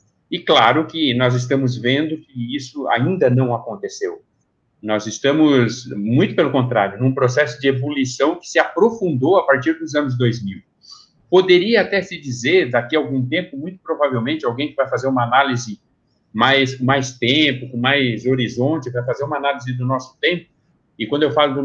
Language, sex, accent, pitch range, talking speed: Portuguese, male, Brazilian, 130-175 Hz, 170 wpm